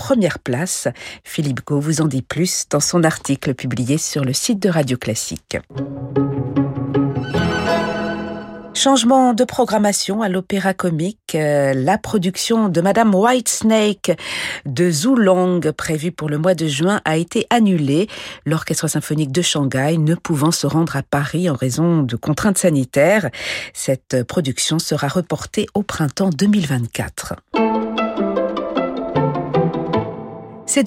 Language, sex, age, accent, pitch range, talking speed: French, female, 50-69, French, 150-200 Hz, 125 wpm